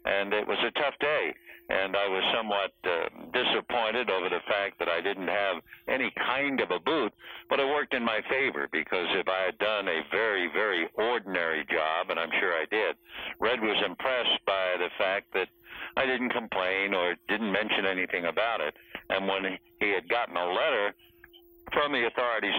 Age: 60-79